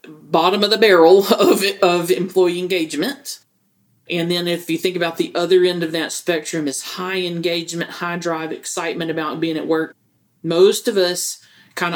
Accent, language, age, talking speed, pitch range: American, English, 40-59, 170 wpm, 165-205 Hz